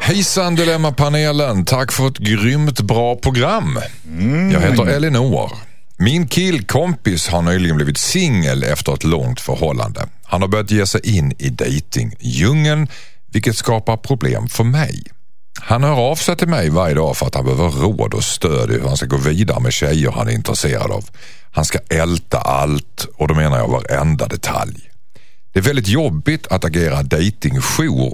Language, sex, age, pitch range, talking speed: Swedish, male, 50-69, 85-130 Hz, 165 wpm